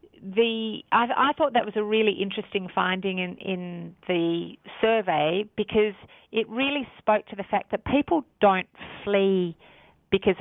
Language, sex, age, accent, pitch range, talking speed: English, female, 40-59, Australian, 175-205 Hz, 150 wpm